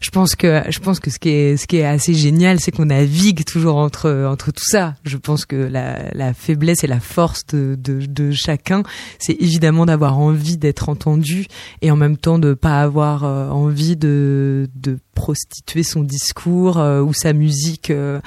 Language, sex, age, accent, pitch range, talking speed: French, female, 20-39, French, 140-165 Hz, 185 wpm